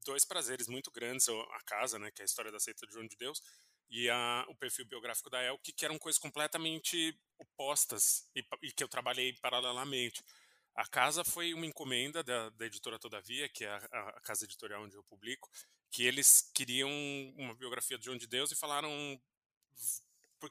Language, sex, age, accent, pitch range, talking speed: Portuguese, male, 20-39, Brazilian, 115-150 Hz, 190 wpm